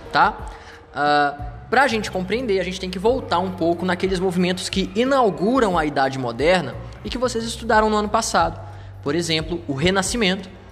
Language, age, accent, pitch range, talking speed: Portuguese, 20-39, Brazilian, 140-190 Hz, 160 wpm